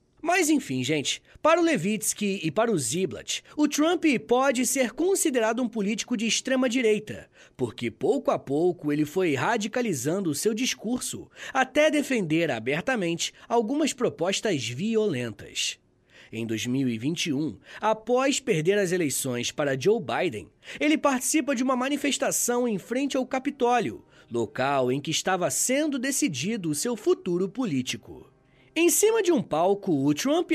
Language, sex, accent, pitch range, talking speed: Portuguese, male, Brazilian, 170-270 Hz, 140 wpm